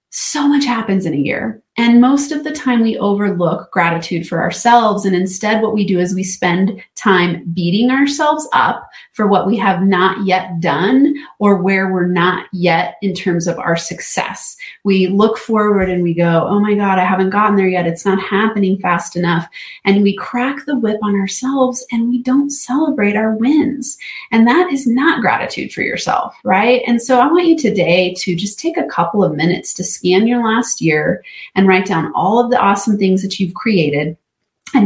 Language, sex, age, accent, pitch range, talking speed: English, female, 30-49, American, 185-260 Hz, 200 wpm